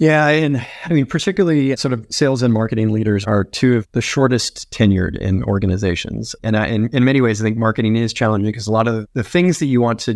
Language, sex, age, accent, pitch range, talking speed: English, male, 30-49, American, 100-125 Hz, 230 wpm